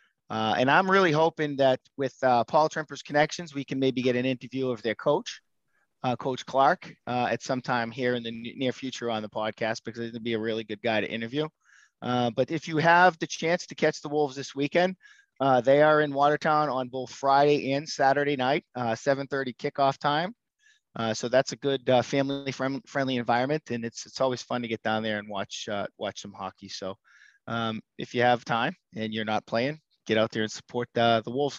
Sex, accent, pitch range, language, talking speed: male, American, 125-155 Hz, English, 220 wpm